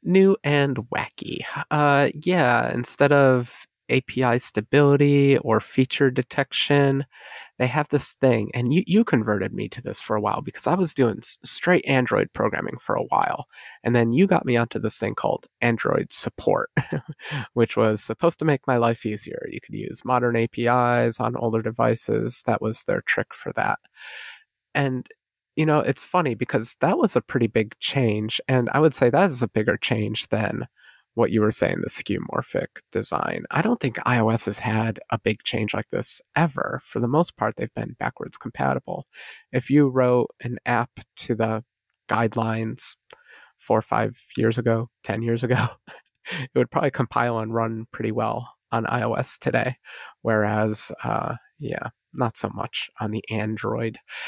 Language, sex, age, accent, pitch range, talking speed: English, male, 30-49, American, 115-140 Hz, 170 wpm